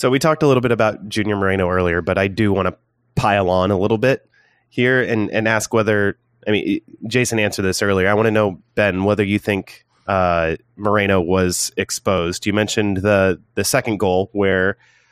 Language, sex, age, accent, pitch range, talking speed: English, male, 30-49, American, 95-115 Hz, 200 wpm